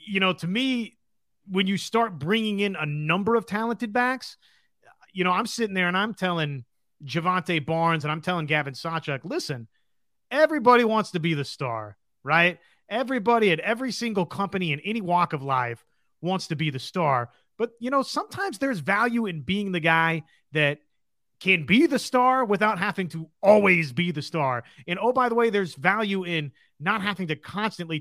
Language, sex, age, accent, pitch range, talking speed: English, male, 30-49, American, 160-205 Hz, 185 wpm